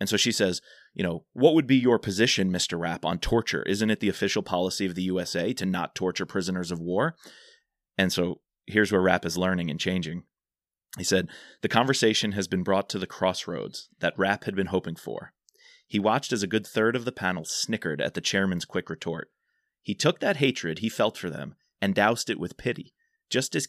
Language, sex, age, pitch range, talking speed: English, male, 30-49, 90-120 Hz, 215 wpm